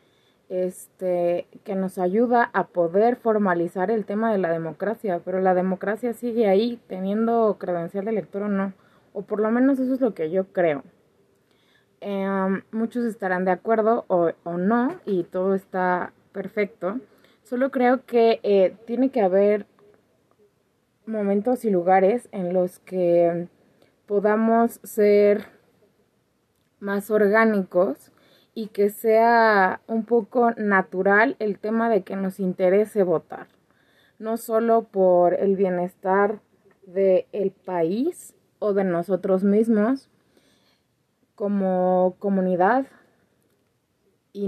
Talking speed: 120 wpm